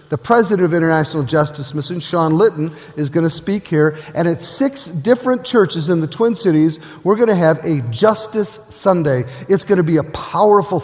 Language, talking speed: English, 195 wpm